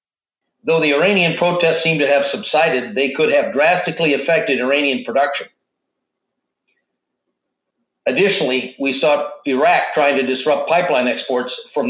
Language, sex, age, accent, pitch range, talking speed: English, male, 50-69, American, 135-155 Hz, 125 wpm